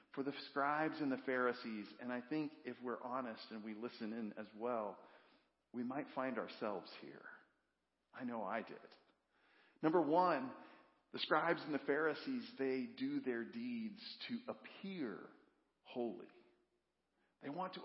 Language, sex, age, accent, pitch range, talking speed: English, male, 50-69, American, 125-195 Hz, 150 wpm